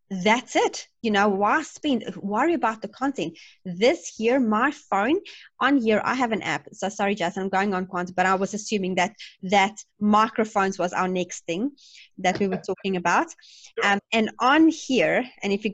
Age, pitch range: 30-49, 180-245 Hz